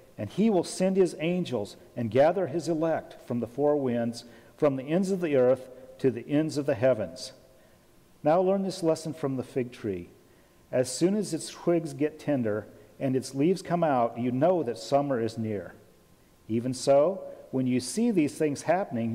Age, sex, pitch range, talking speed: 50-69, male, 125-165 Hz, 190 wpm